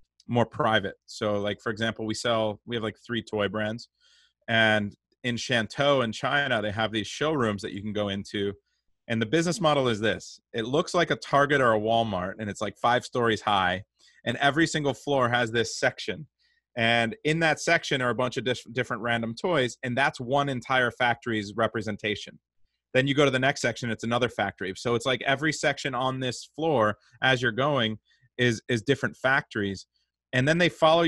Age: 30-49